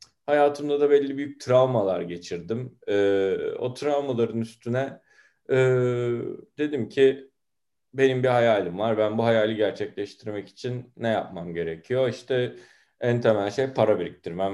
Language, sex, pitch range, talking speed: Turkish, male, 110-135 Hz, 130 wpm